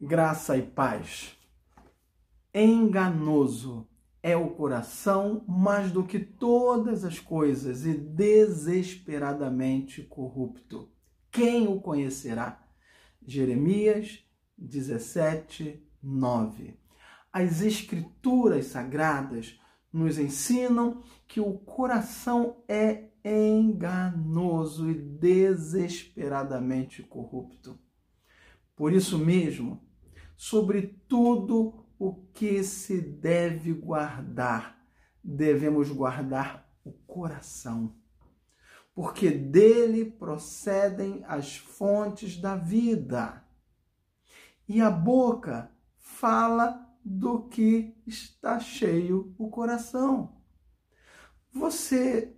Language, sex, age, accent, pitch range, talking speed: Portuguese, male, 50-69, Brazilian, 145-220 Hz, 75 wpm